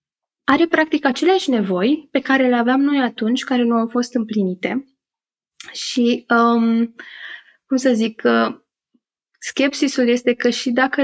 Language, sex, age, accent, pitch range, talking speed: Romanian, female, 20-39, native, 210-255 Hz, 140 wpm